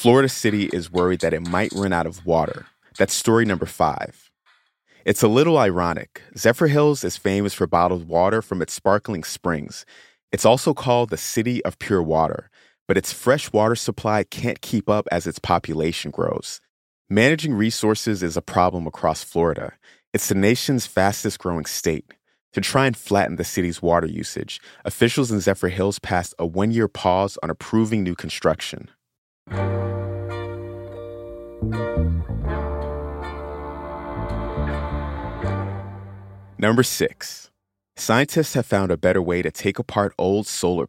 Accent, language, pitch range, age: American, English, 90-110 Hz, 30-49